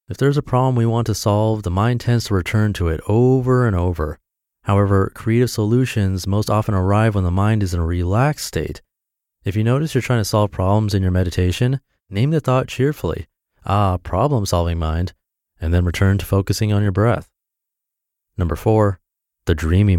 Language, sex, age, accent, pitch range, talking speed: English, male, 30-49, American, 90-115 Hz, 185 wpm